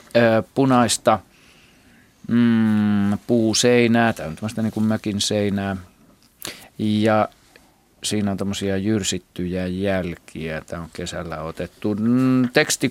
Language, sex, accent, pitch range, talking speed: Finnish, male, native, 95-120 Hz, 95 wpm